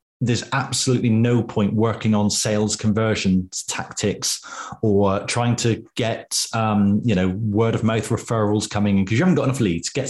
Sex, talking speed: male, 170 wpm